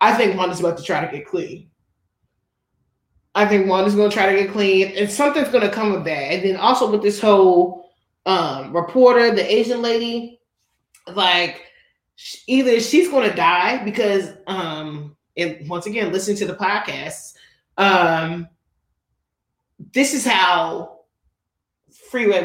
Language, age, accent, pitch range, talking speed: English, 30-49, American, 170-210 Hz, 145 wpm